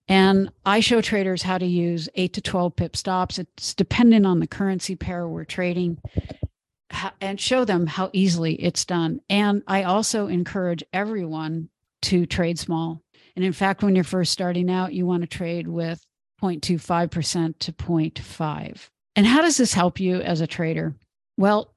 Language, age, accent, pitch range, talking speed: English, 50-69, American, 170-200 Hz, 170 wpm